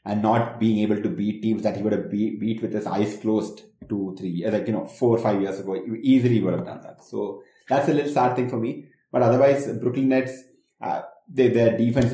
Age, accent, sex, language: 30-49, Indian, male, English